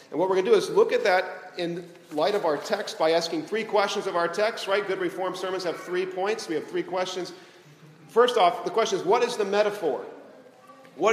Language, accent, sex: English, American, male